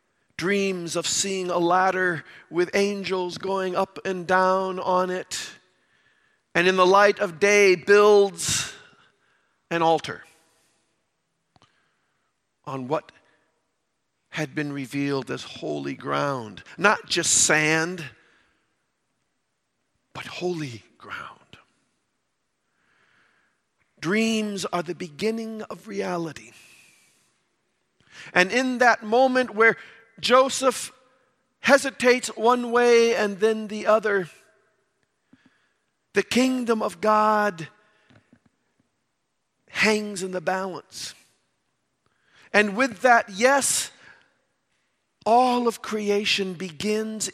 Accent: American